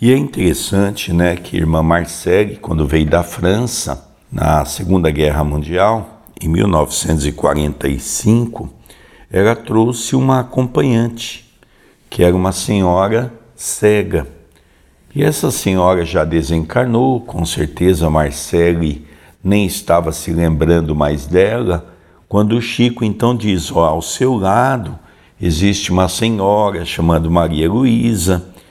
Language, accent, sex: Portuguese, Brazilian, male